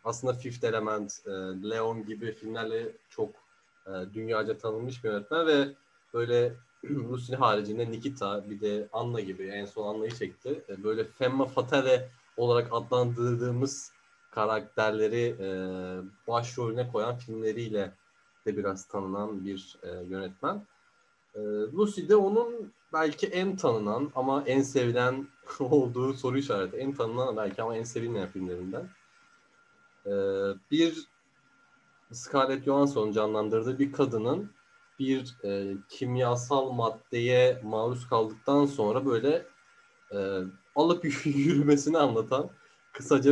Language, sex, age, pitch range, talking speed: Turkish, male, 30-49, 105-140 Hz, 105 wpm